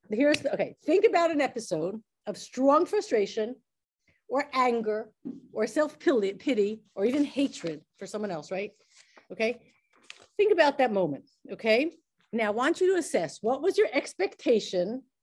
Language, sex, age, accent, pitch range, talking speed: English, female, 50-69, American, 210-270 Hz, 150 wpm